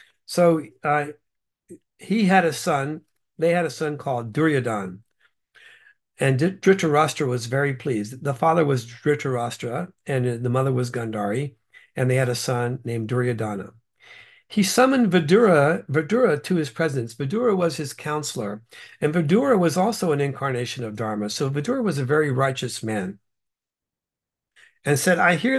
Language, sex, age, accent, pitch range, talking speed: English, male, 60-79, American, 130-180 Hz, 150 wpm